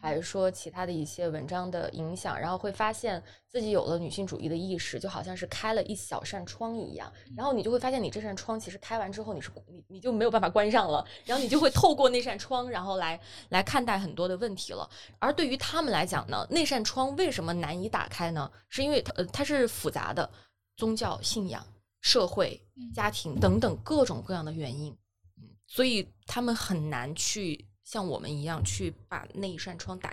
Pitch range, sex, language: 165-245 Hz, female, Chinese